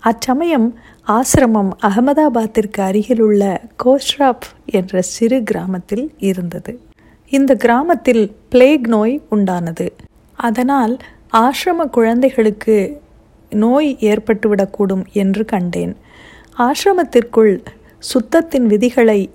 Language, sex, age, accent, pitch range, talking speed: Tamil, female, 50-69, native, 200-250 Hz, 75 wpm